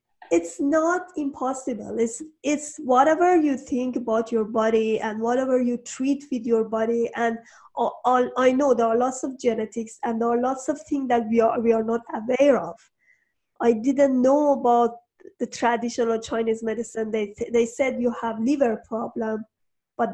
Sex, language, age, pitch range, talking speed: female, English, 30-49, 225-265 Hz, 175 wpm